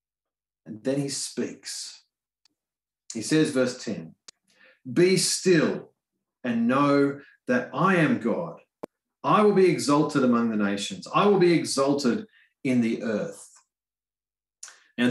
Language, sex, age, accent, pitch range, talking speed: English, male, 30-49, Australian, 120-175 Hz, 125 wpm